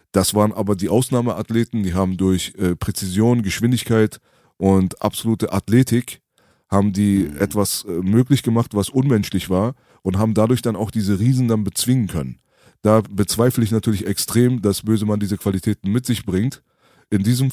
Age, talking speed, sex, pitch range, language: 30-49, 160 wpm, male, 105-125 Hz, German